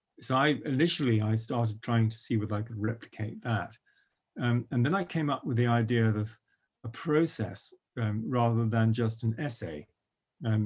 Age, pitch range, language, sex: 40-59, 110-125 Hz, English, male